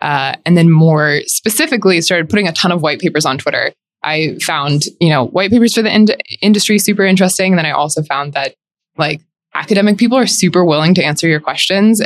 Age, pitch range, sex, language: 20-39, 150-185 Hz, female, English